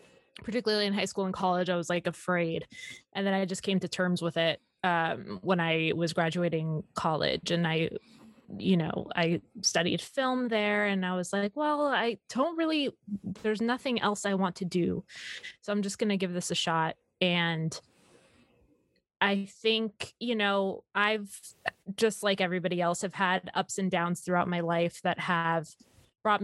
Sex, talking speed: female, 175 wpm